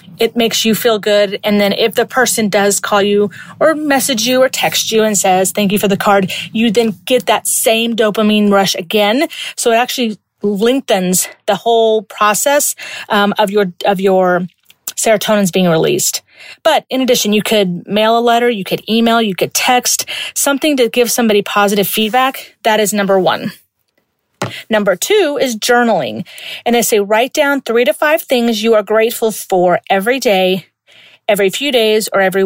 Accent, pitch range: American, 200-235 Hz